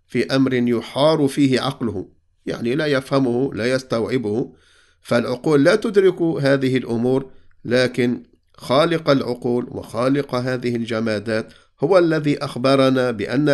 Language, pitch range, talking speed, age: English, 115-140 Hz, 110 wpm, 50-69